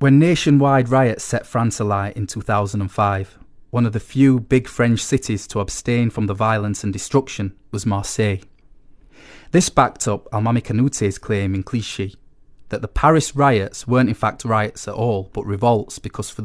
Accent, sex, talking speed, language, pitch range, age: British, male, 170 wpm, English, 100-120 Hz, 30-49